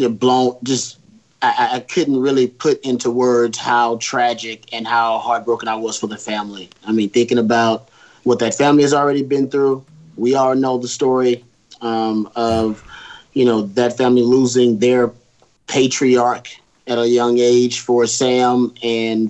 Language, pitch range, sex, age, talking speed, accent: English, 115-125 Hz, male, 30-49, 160 wpm, American